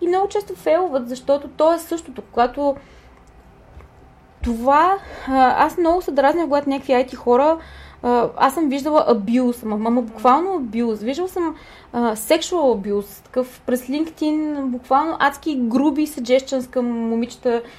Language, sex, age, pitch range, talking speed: Bulgarian, female, 20-39, 225-310 Hz, 130 wpm